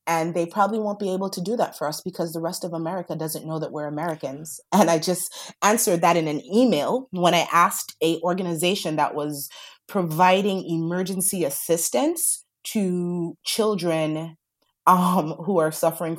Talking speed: 165 wpm